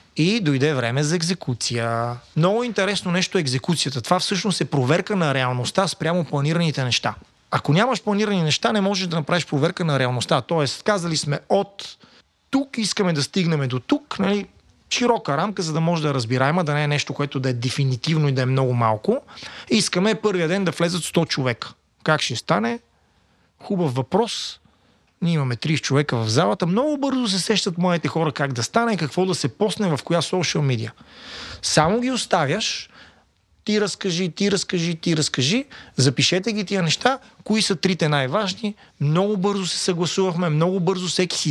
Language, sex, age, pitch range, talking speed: Bulgarian, male, 30-49, 135-190 Hz, 175 wpm